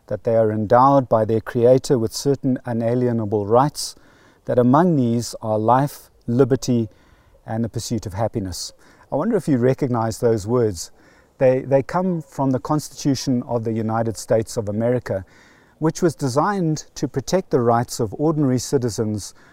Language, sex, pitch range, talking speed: English, male, 115-145 Hz, 155 wpm